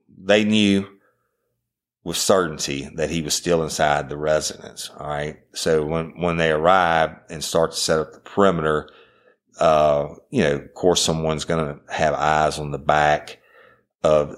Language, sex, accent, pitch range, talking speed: English, male, American, 75-85 Hz, 165 wpm